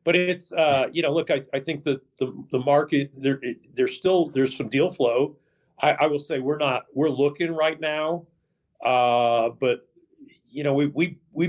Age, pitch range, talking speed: 40-59, 100-145 Hz, 195 wpm